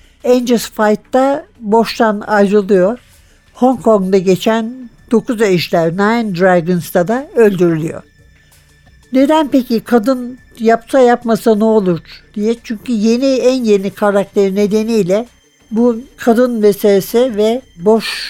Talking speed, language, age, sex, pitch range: 105 wpm, Turkish, 60-79, male, 180-230 Hz